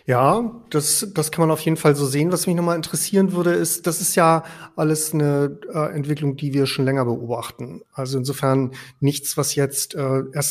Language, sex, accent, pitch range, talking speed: German, male, German, 135-165 Hz, 200 wpm